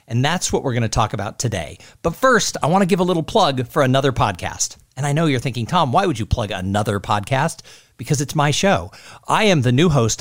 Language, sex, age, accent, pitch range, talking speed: English, male, 50-69, American, 110-180 Hz, 245 wpm